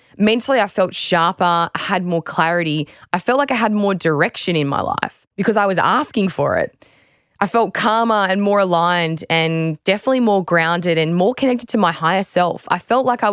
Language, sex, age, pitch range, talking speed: English, female, 20-39, 170-215 Hz, 205 wpm